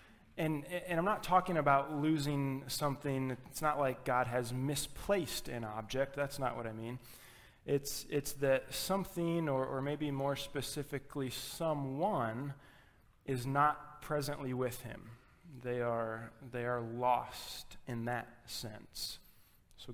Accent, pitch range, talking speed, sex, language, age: American, 120-140 Hz, 135 wpm, male, English, 20-39